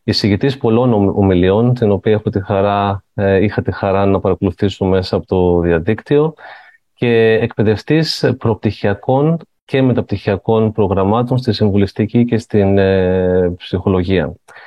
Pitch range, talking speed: 100-130 Hz, 120 wpm